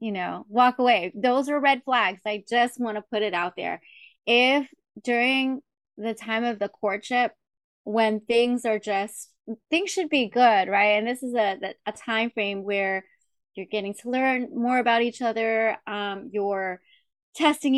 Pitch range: 205-245 Hz